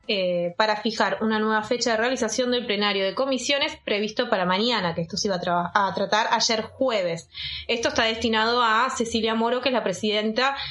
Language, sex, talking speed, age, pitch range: Spanish, female, 195 wpm, 20-39, 215-270 Hz